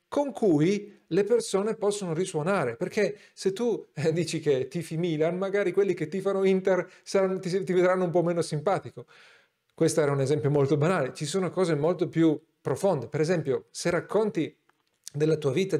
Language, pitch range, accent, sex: Italian, 145-190 Hz, native, male